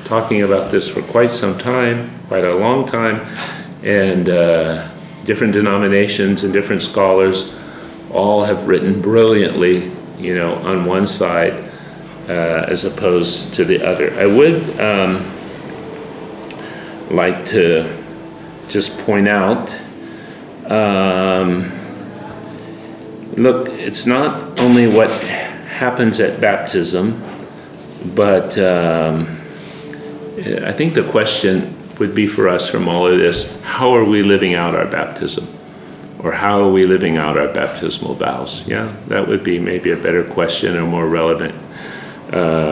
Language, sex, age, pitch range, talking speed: English, male, 40-59, 90-110 Hz, 130 wpm